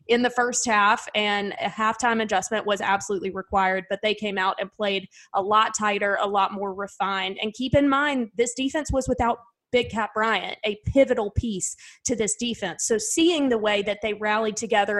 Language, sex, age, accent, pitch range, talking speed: English, female, 20-39, American, 200-230 Hz, 195 wpm